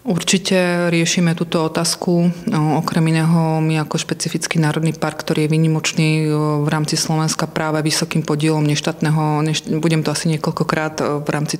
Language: Slovak